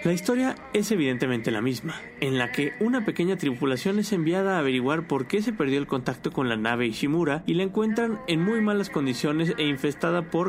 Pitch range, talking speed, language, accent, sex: 135-195 Hz, 205 wpm, Spanish, Mexican, male